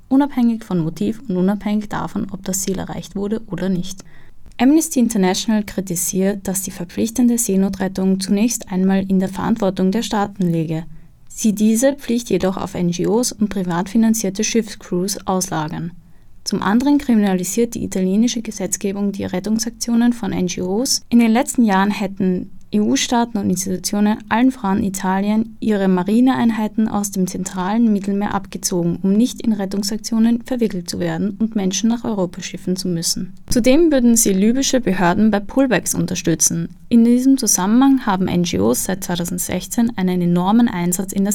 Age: 20-39